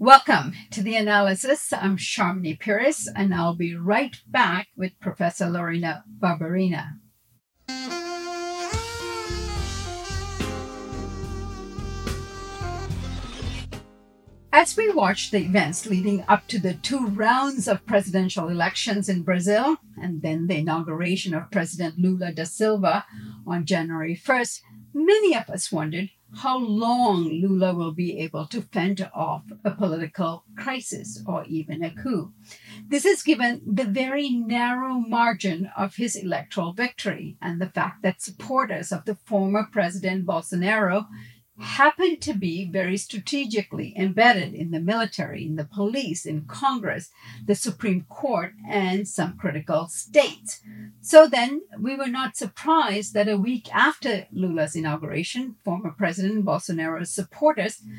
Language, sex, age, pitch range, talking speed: English, female, 50-69, 165-230 Hz, 125 wpm